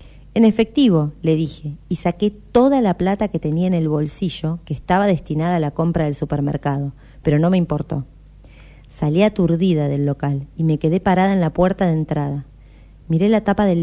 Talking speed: 185 wpm